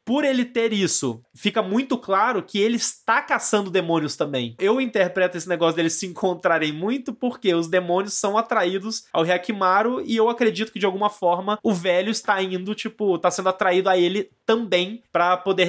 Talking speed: 185 wpm